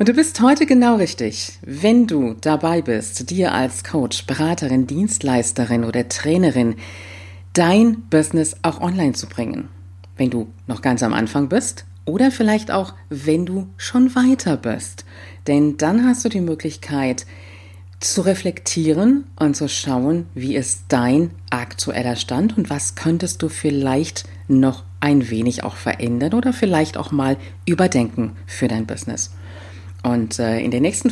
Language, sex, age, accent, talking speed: German, female, 40-59, German, 150 wpm